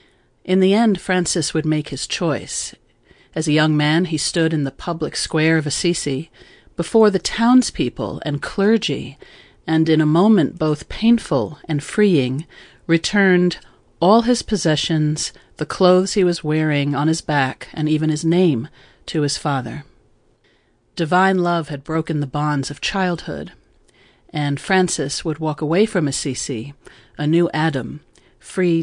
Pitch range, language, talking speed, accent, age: 150-185 Hz, English, 150 wpm, American, 40-59